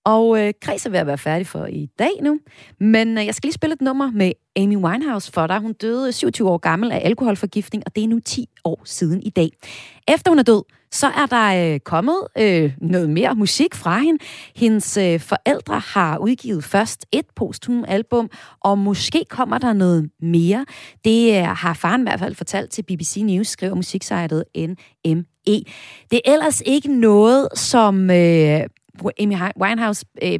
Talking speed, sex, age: 190 wpm, female, 30-49